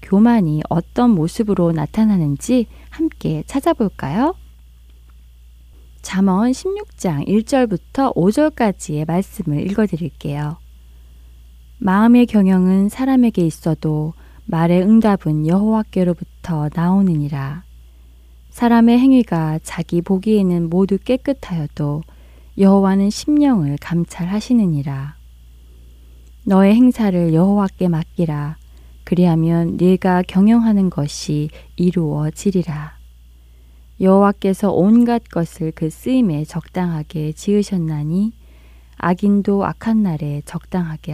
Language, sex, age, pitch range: Korean, female, 20-39, 150-205 Hz